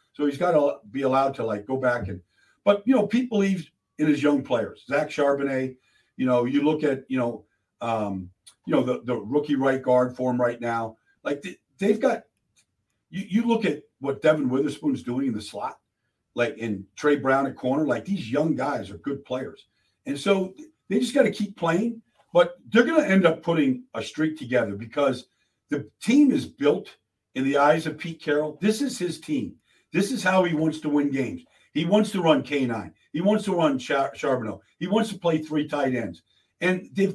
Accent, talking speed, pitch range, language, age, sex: American, 210 wpm, 130-195 Hz, English, 50-69, male